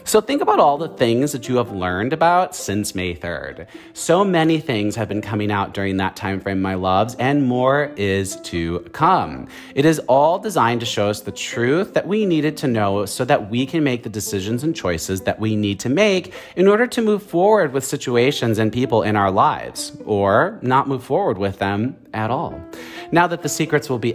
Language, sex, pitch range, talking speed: English, male, 110-155 Hz, 215 wpm